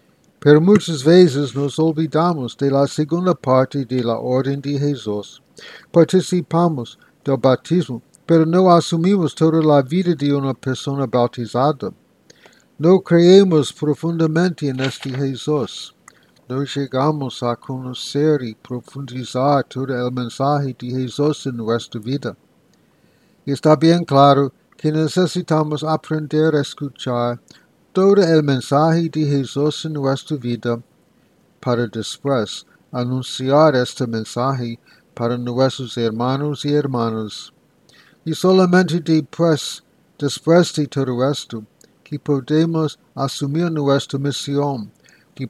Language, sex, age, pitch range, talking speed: English, male, 60-79, 130-160 Hz, 115 wpm